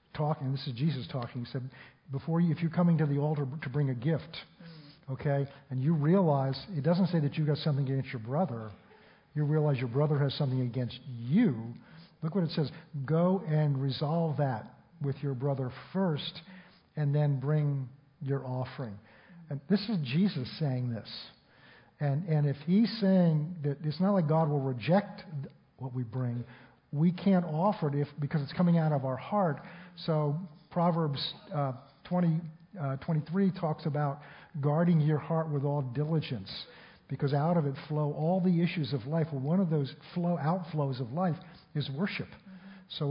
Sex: male